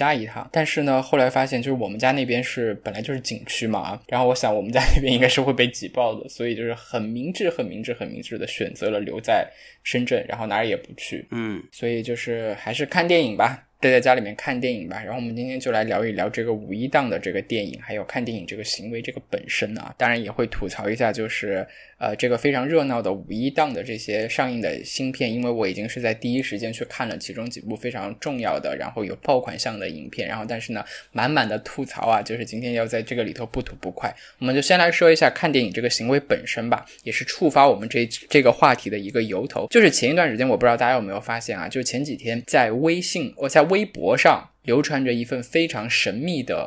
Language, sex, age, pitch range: Chinese, male, 10-29, 115-145 Hz